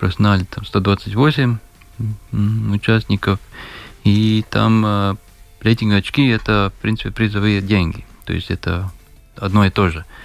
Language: Russian